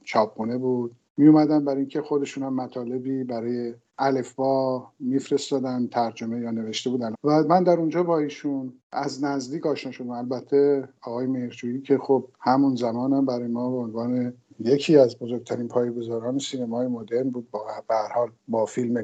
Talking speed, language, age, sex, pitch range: 155 wpm, Persian, 50-69, male, 115-135 Hz